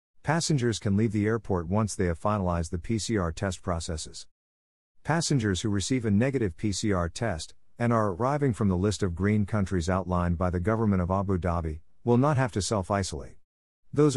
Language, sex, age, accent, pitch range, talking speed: English, male, 50-69, American, 90-110 Hz, 180 wpm